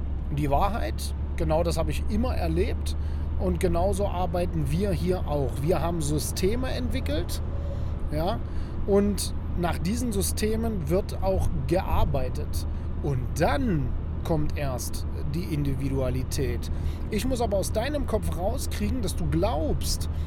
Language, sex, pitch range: German, male, 80-90 Hz